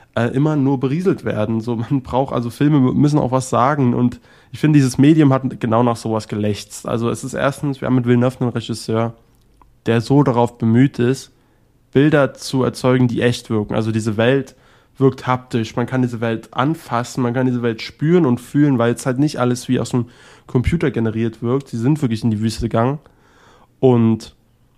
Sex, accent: male, German